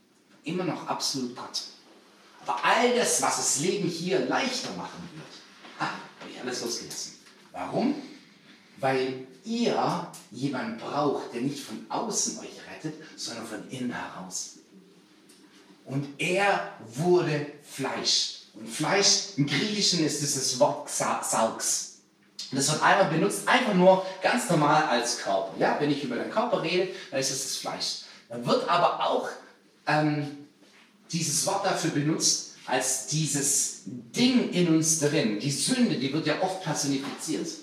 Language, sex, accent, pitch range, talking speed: German, male, German, 145-215 Hz, 145 wpm